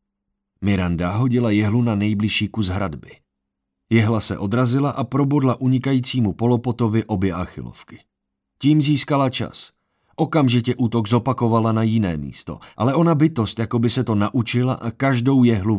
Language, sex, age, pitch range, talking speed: Czech, male, 30-49, 95-125 Hz, 135 wpm